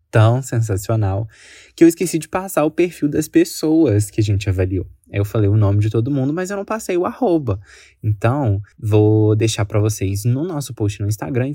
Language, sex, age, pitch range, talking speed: Portuguese, male, 20-39, 100-130 Hz, 205 wpm